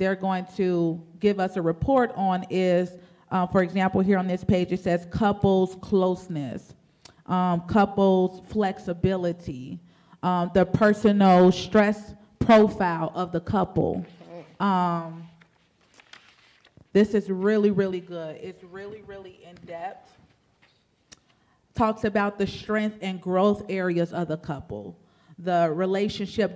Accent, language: American, English